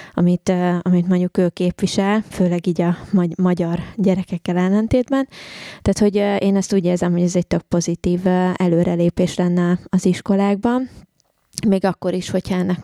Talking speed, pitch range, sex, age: 145 wpm, 180-190 Hz, female, 20-39